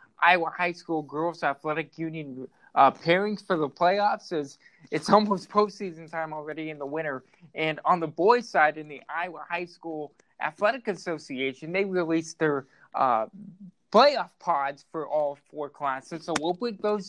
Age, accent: 20-39, American